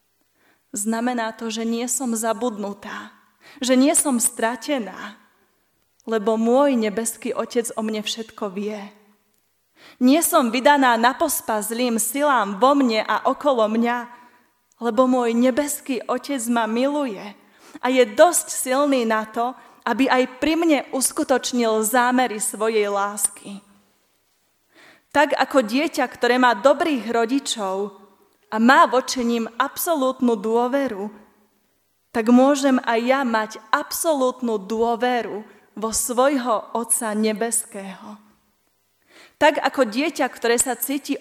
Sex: female